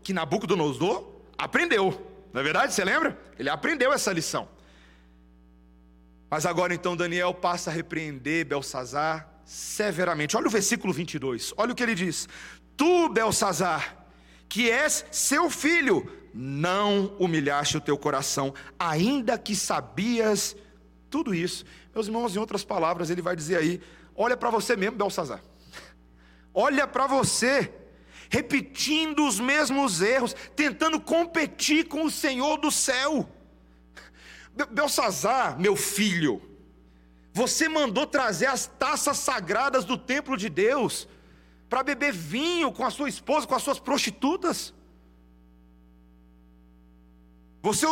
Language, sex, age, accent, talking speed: Portuguese, male, 40-59, Brazilian, 125 wpm